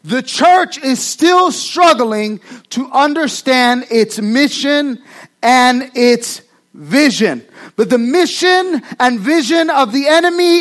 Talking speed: 115 wpm